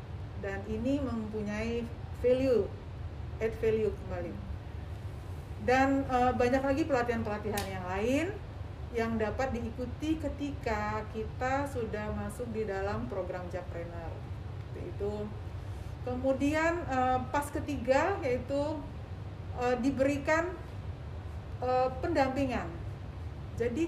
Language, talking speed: Indonesian, 80 wpm